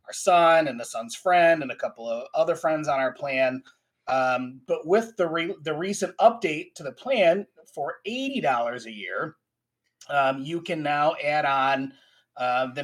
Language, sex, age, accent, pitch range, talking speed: English, male, 30-49, American, 135-185 Hz, 180 wpm